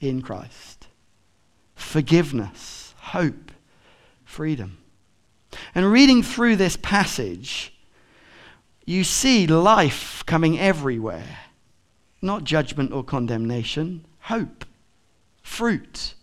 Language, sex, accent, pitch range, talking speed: English, male, British, 150-205 Hz, 80 wpm